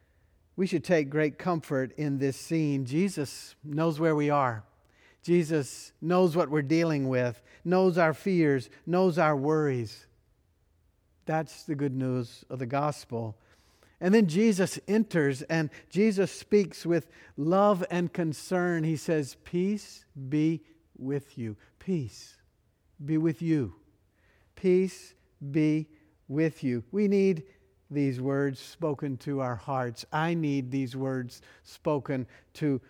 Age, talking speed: 50-69, 130 wpm